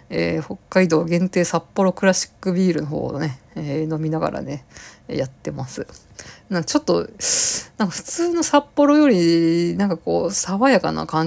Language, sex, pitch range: Japanese, female, 170-210 Hz